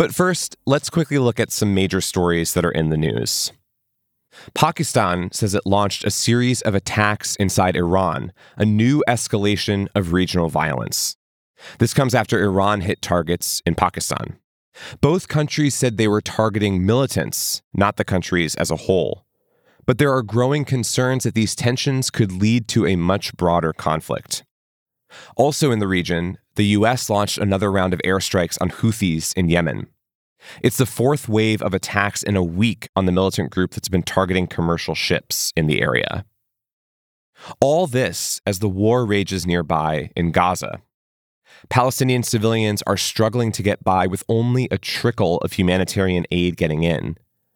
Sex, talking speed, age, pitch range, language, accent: male, 160 wpm, 30-49, 90-120 Hz, English, American